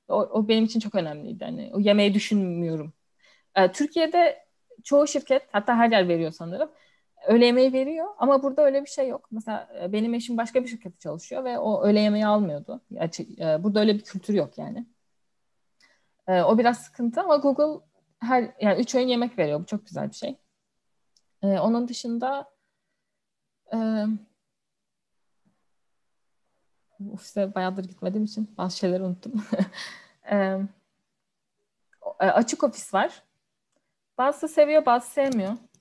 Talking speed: 135 wpm